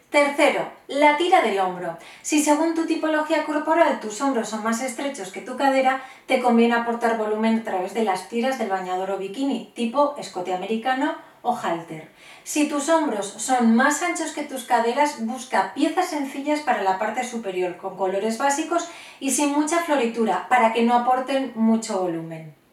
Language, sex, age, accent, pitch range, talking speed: Spanish, female, 30-49, Spanish, 215-285 Hz, 170 wpm